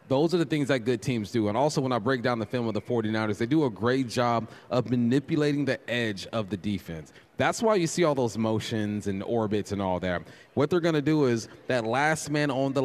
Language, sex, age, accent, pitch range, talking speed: English, male, 30-49, American, 110-140 Hz, 250 wpm